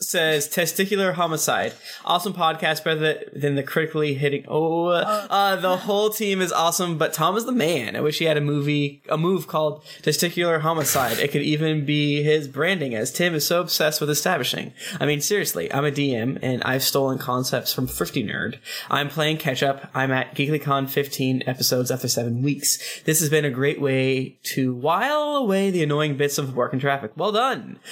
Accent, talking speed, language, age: American, 195 wpm, English, 20-39